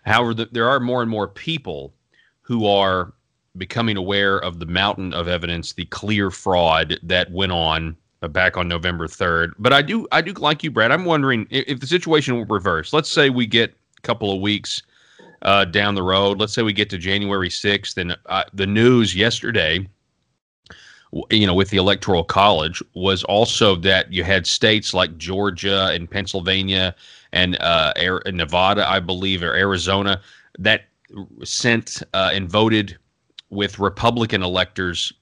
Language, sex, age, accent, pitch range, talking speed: English, male, 30-49, American, 95-110 Hz, 165 wpm